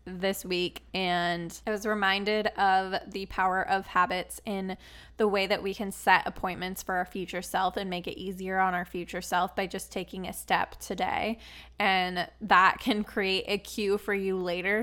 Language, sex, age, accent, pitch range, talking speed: English, female, 20-39, American, 180-215 Hz, 185 wpm